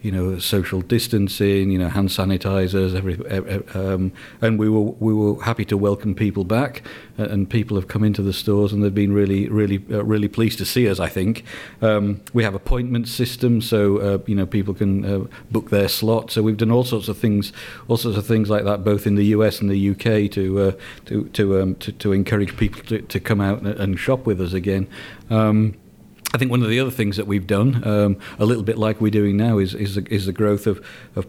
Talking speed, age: 230 wpm, 50-69